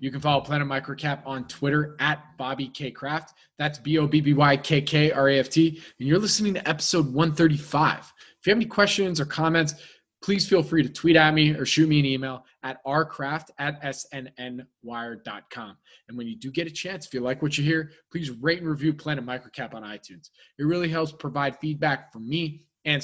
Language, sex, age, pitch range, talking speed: English, male, 20-39, 135-160 Hz, 180 wpm